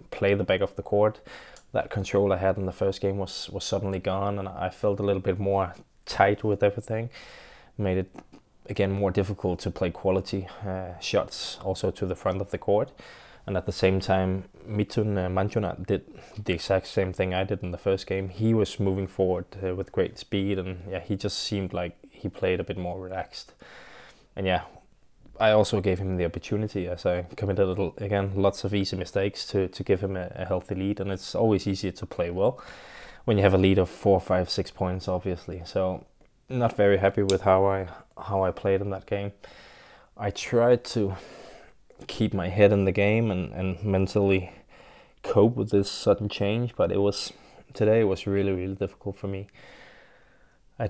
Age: 20-39